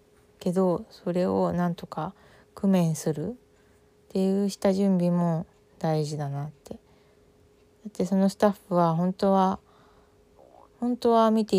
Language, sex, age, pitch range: Japanese, female, 20-39, 155-190 Hz